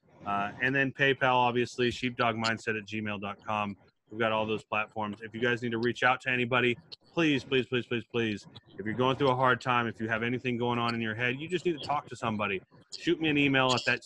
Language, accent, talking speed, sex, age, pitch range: English, American, 240 wpm, male, 30-49, 115-140 Hz